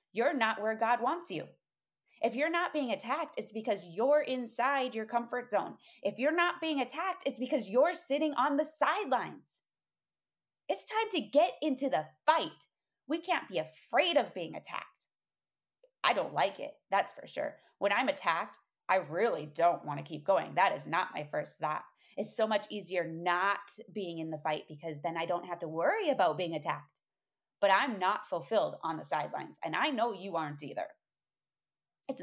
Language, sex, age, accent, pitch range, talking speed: English, female, 20-39, American, 175-255 Hz, 185 wpm